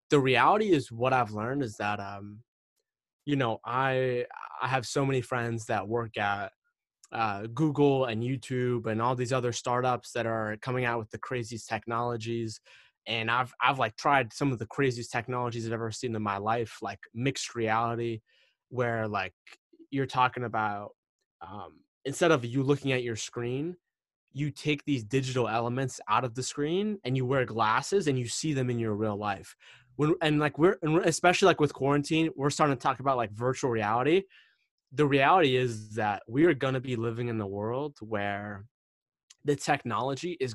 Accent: American